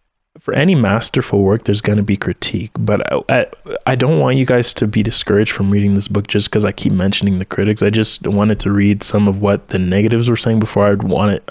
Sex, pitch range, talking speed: male, 100-115 Hz, 240 wpm